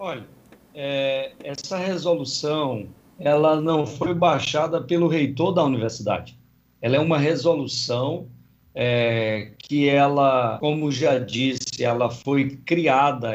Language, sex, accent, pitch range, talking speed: Portuguese, male, Brazilian, 125-160 Hz, 105 wpm